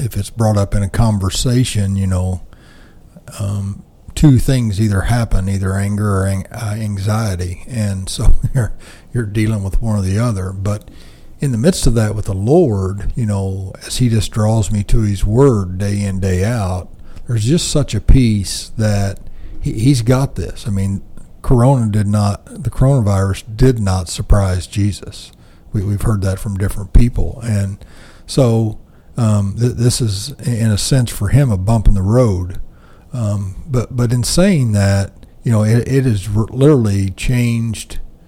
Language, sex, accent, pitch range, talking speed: English, male, American, 95-115 Hz, 170 wpm